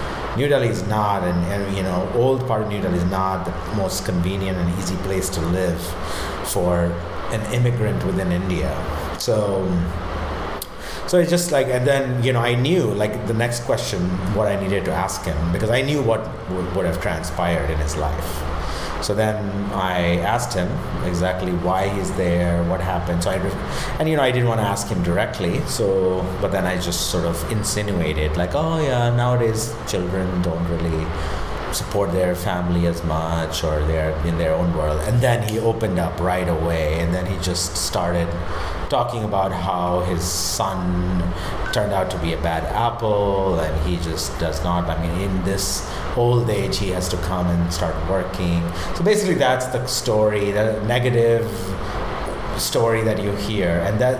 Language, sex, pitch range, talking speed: English, male, 85-110 Hz, 180 wpm